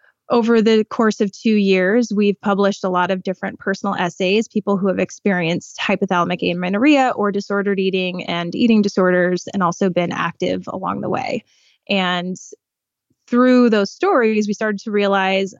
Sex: female